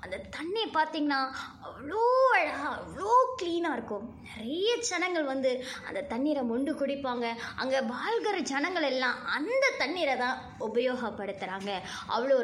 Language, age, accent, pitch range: Tamil, 20-39, native, 220-335 Hz